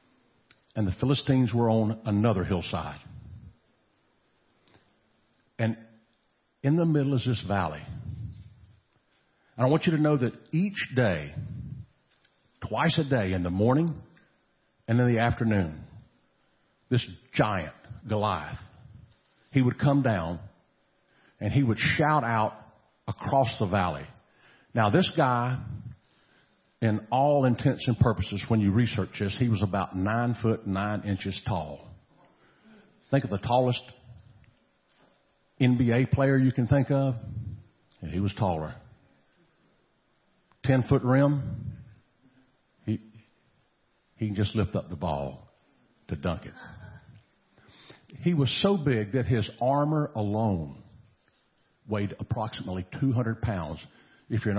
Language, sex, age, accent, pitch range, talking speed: English, male, 50-69, American, 105-130 Hz, 120 wpm